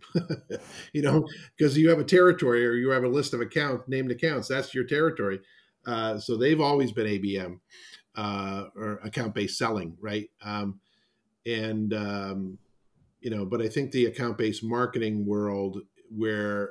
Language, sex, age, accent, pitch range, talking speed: English, male, 50-69, American, 100-115 Hz, 160 wpm